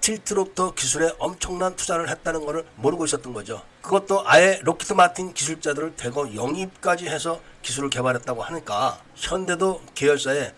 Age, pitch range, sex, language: 40-59, 145-195 Hz, male, Korean